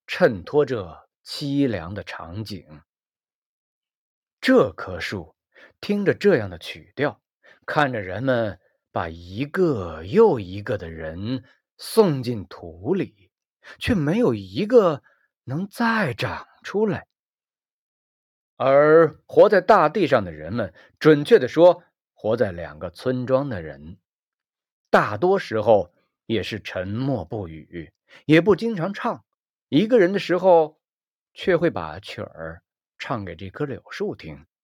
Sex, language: male, Chinese